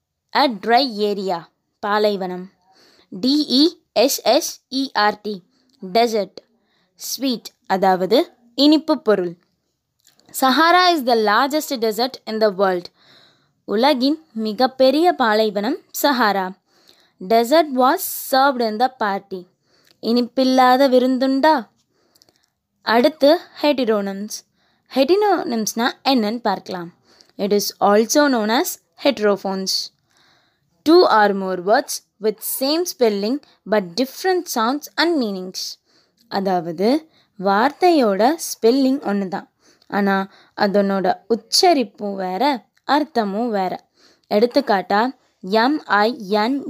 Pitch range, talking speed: 205-275 Hz, 80 wpm